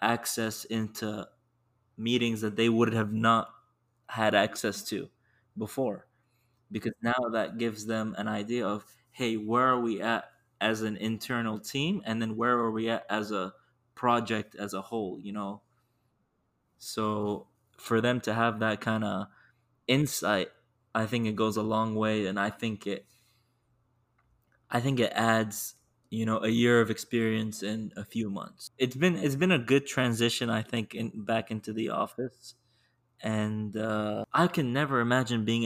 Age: 20-39